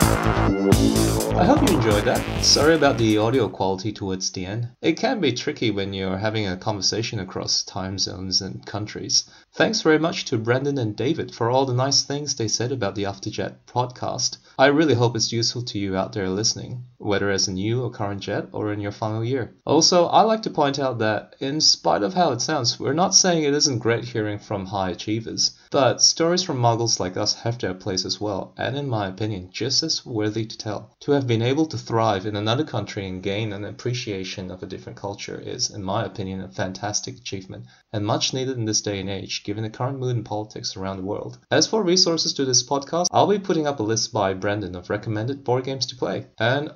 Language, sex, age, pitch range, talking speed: English, male, 20-39, 100-135 Hz, 220 wpm